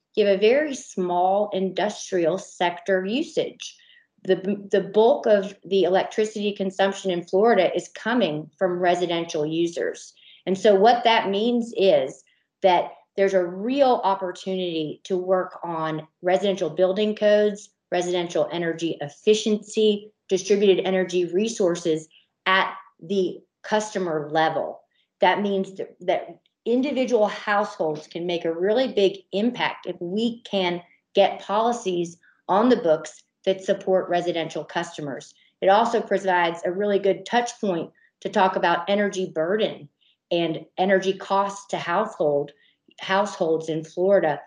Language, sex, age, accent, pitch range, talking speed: English, female, 40-59, American, 170-205 Hz, 125 wpm